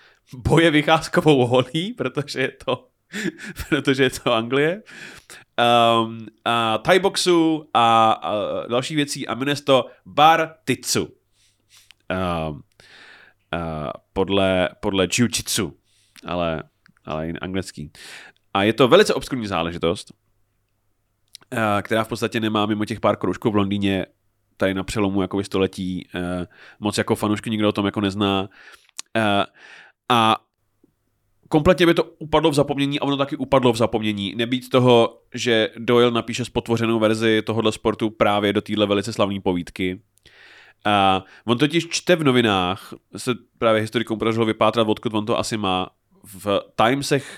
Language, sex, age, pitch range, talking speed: Czech, male, 30-49, 100-130 Hz, 135 wpm